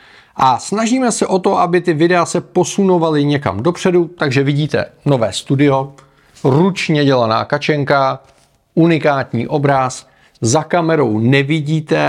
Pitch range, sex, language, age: 120-175 Hz, male, Czech, 40-59